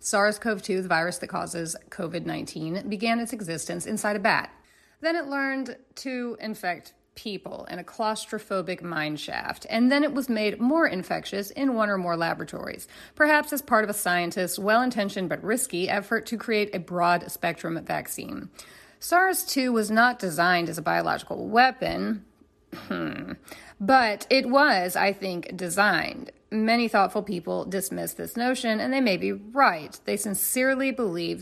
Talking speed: 145 wpm